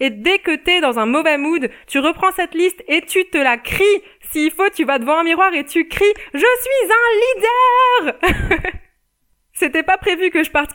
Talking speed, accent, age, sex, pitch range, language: 205 wpm, French, 20-39, female, 260-330 Hz, French